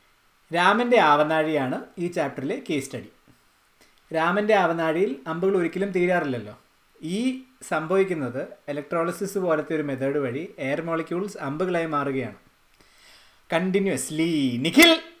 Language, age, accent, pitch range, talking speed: Malayalam, 30-49, native, 150-205 Hz, 95 wpm